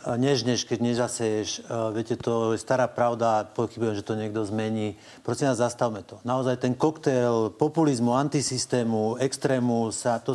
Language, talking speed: Slovak, 145 wpm